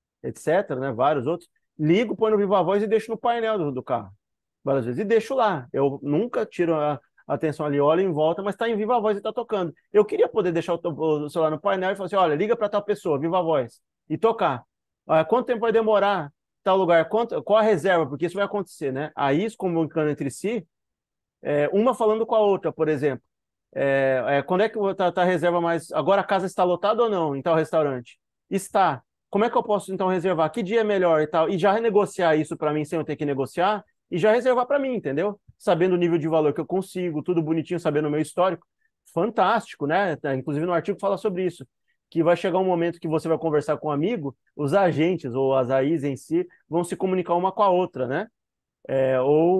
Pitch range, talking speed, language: 150-200 Hz, 230 wpm, Portuguese